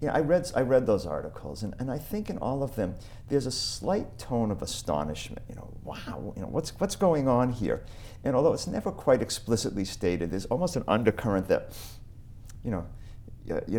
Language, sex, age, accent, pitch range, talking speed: English, male, 50-69, American, 90-110 Hz, 200 wpm